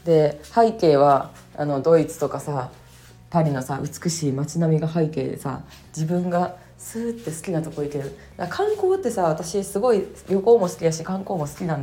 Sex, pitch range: female, 145-195 Hz